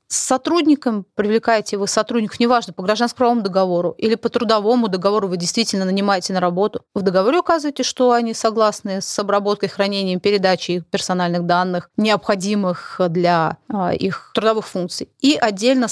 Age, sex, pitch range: 30-49, female, 195-245 Hz